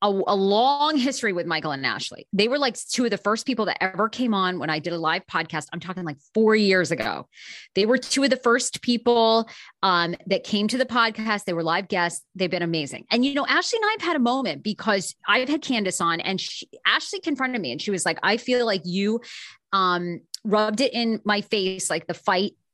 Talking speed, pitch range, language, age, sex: 230 wpm, 180-245 Hz, English, 30-49, female